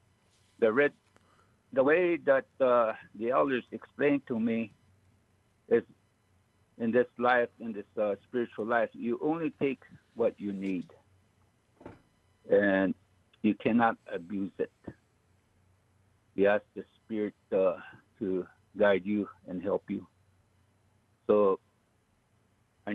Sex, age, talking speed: male, 60-79, 115 wpm